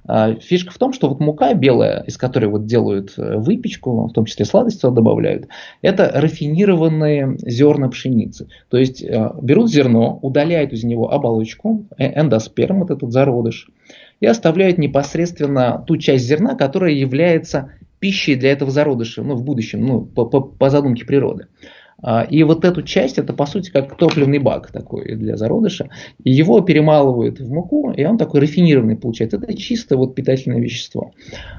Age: 20-39